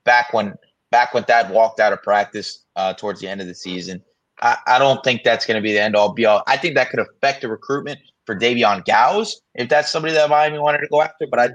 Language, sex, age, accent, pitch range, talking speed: English, male, 30-49, American, 120-165 Hz, 250 wpm